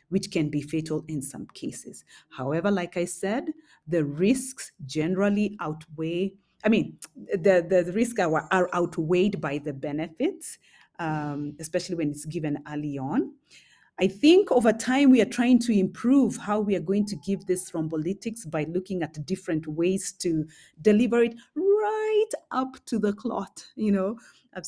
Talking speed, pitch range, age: 165 wpm, 170-215 Hz, 30-49